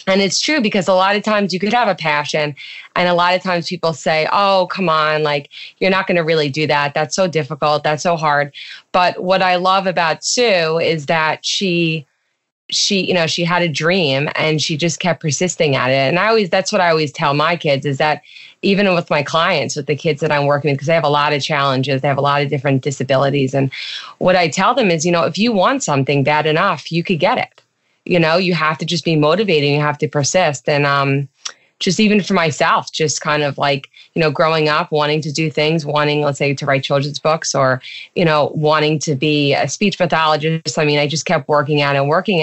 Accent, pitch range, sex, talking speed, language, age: American, 145-175 Hz, female, 245 wpm, English, 20-39